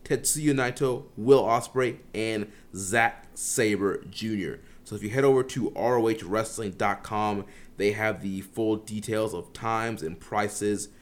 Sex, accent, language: male, American, English